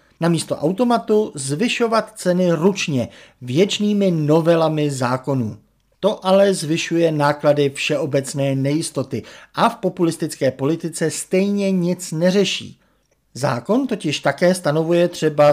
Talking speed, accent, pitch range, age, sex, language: 100 wpm, native, 135-180 Hz, 50-69, male, Czech